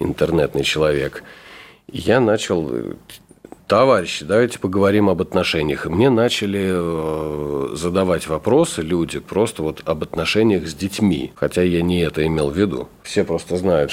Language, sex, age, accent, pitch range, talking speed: Russian, male, 40-59, native, 75-100 Hz, 135 wpm